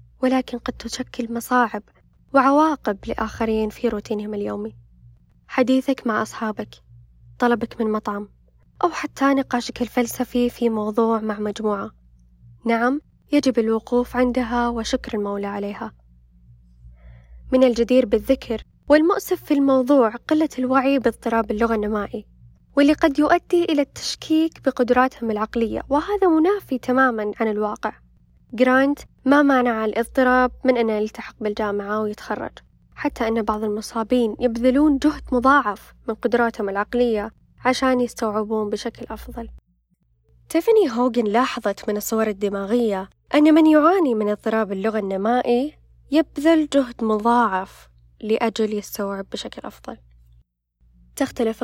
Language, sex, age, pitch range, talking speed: Arabic, female, 10-29, 210-260 Hz, 115 wpm